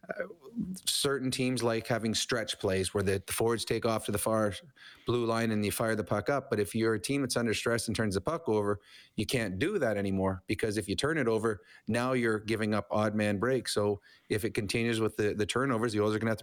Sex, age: male, 30-49